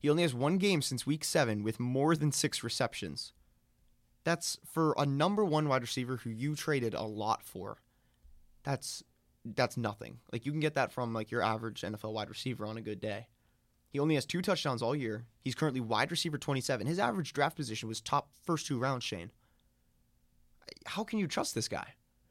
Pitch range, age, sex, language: 110-150 Hz, 20-39, male, English